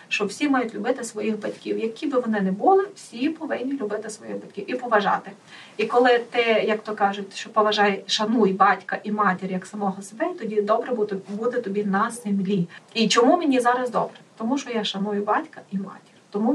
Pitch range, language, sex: 200-230 Hz, Ukrainian, female